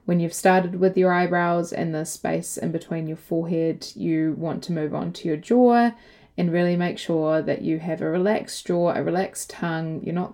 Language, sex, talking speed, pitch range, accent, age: English, female, 210 wpm, 165-190 Hz, Australian, 20-39